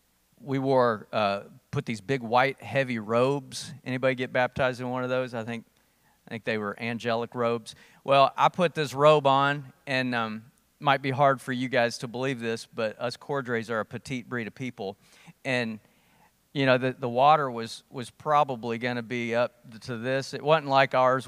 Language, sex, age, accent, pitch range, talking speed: English, male, 40-59, American, 115-135 Hz, 195 wpm